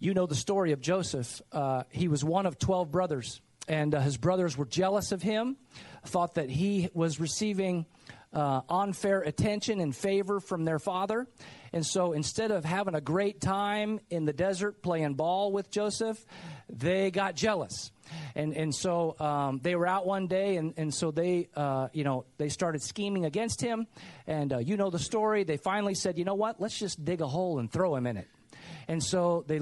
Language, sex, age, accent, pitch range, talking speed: English, male, 40-59, American, 145-195 Hz, 200 wpm